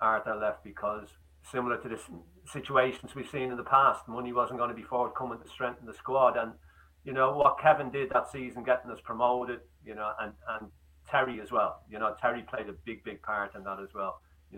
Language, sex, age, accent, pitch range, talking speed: English, male, 40-59, British, 95-115 Hz, 220 wpm